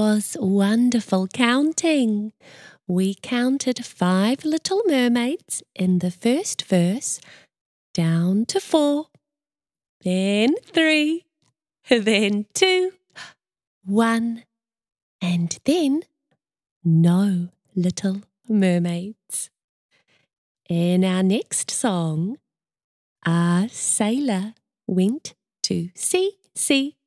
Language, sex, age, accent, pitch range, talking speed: English, female, 30-49, British, 185-280 Hz, 80 wpm